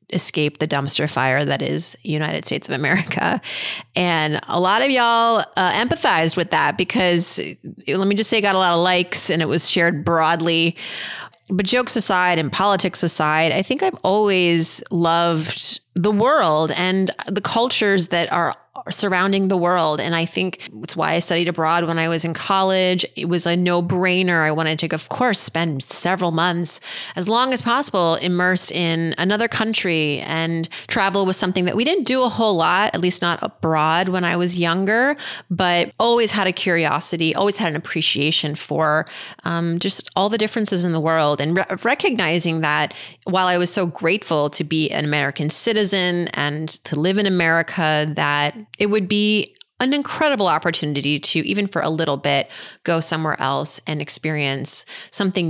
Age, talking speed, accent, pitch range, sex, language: 30-49, 175 wpm, American, 155-195 Hz, female, English